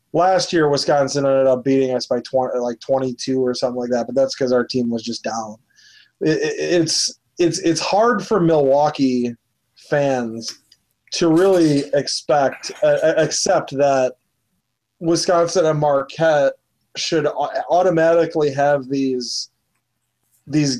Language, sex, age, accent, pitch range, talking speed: English, male, 30-49, American, 135-160 Hz, 135 wpm